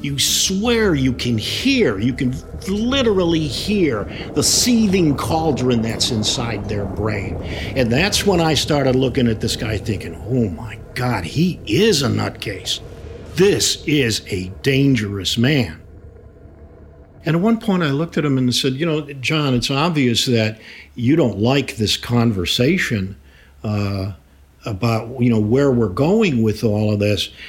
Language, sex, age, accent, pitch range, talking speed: English, male, 50-69, American, 115-170 Hz, 155 wpm